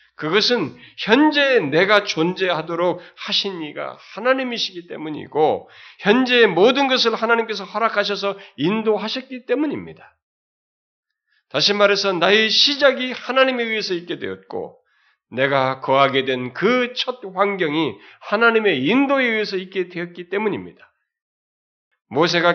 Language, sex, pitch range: Korean, male, 150-220 Hz